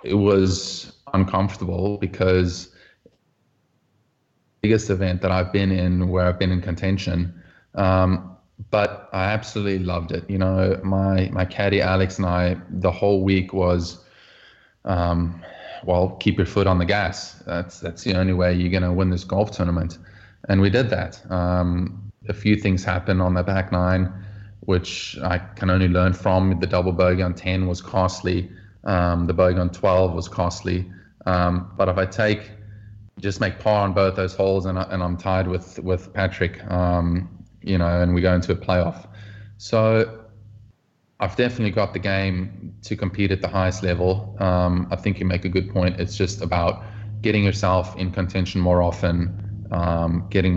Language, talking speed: English, 170 wpm